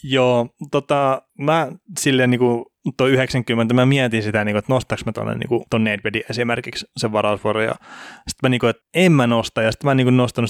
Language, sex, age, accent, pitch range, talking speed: Finnish, male, 20-39, native, 110-125 Hz, 215 wpm